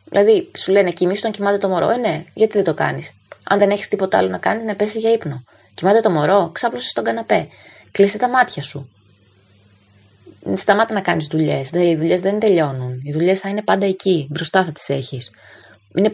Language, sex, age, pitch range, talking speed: Greek, female, 20-39, 150-210 Hz, 195 wpm